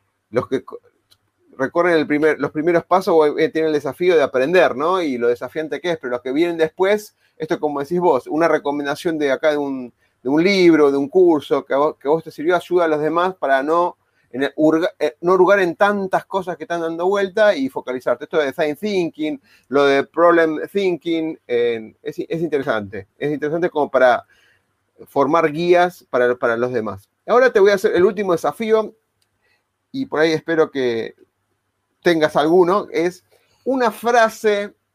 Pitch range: 145-200 Hz